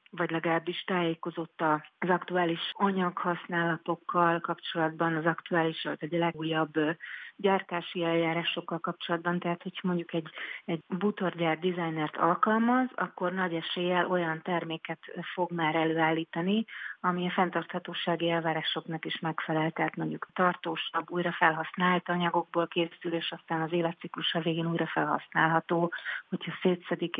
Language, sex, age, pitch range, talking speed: Hungarian, female, 40-59, 165-180 Hz, 115 wpm